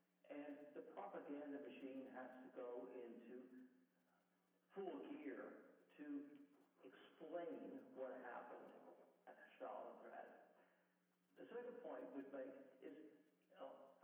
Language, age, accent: English, 60-79, American